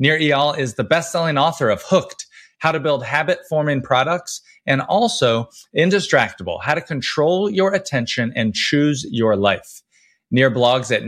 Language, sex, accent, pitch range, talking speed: English, male, American, 120-160 Hz, 150 wpm